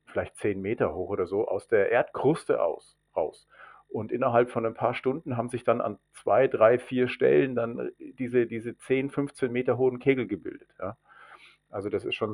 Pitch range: 105-135 Hz